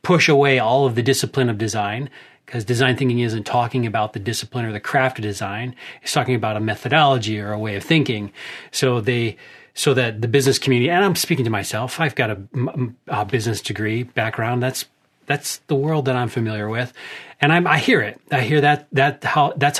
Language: English